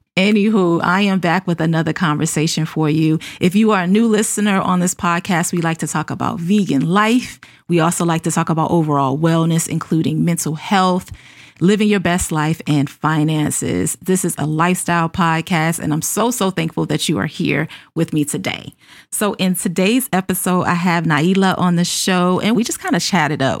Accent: American